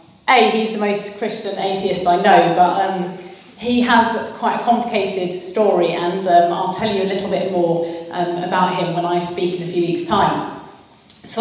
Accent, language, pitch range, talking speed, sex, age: British, English, 180-215 Hz, 195 wpm, female, 30-49